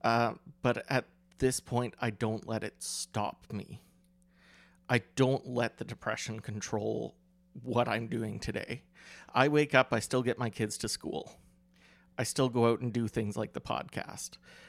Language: English